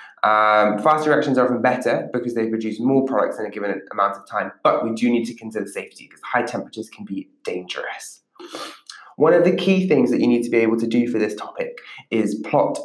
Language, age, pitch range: English, 20-39, 110-130 Hz